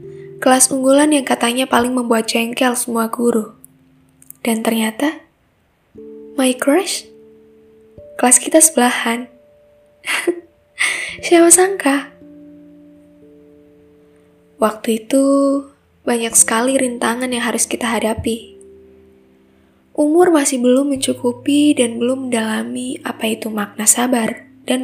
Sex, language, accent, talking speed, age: female, Indonesian, native, 95 wpm, 10-29